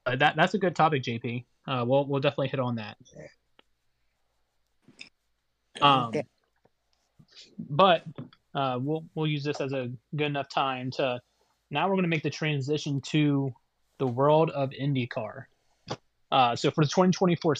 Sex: male